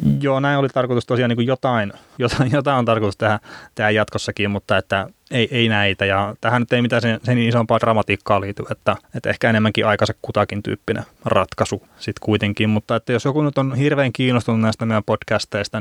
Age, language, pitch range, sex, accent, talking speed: 20-39, Finnish, 105-120 Hz, male, native, 185 wpm